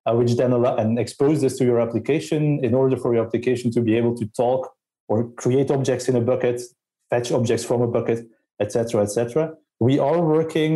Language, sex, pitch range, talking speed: English, male, 120-140 Hz, 210 wpm